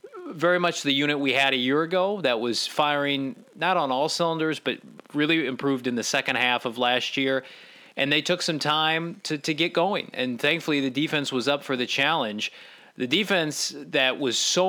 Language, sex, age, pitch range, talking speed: English, male, 30-49, 125-155 Hz, 200 wpm